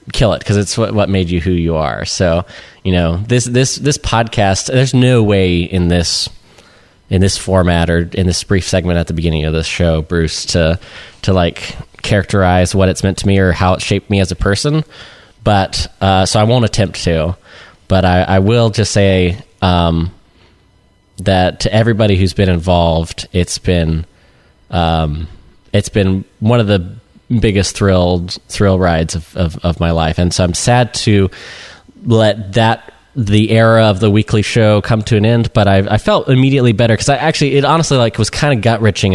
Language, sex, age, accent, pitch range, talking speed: English, male, 20-39, American, 90-110 Hz, 195 wpm